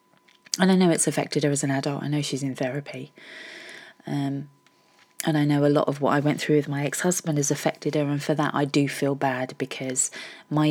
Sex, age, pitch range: female, 30-49, 145-165 Hz